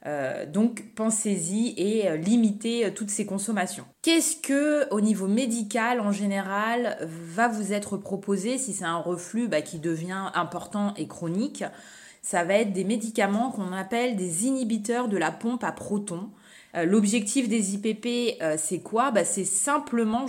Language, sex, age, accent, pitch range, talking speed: French, female, 20-39, French, 180-230 Hz, 165 wpm